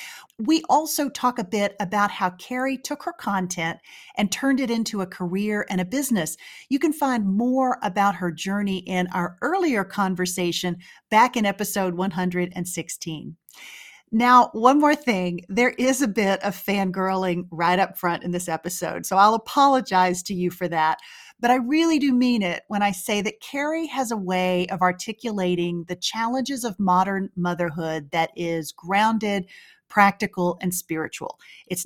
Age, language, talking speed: 40-59, English, 160 wpm